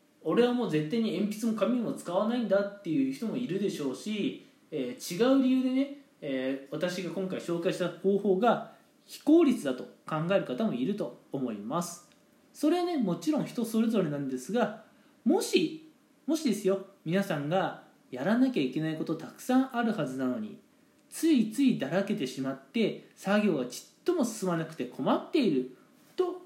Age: 20-39